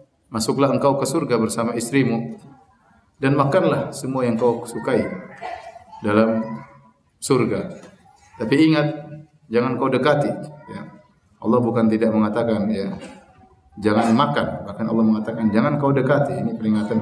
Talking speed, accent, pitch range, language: 125 wpm, native, 115-150 Hz, Indonesian